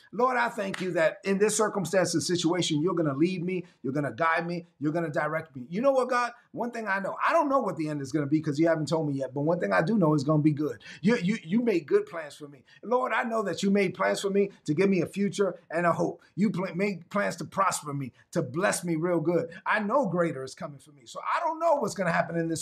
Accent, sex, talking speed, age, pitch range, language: American, male, 300 wpm, 30-49, 170-215 Hz, English